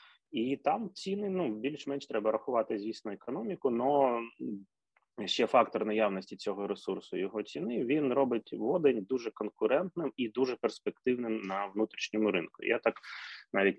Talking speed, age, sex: 135 wpm, 20-39, male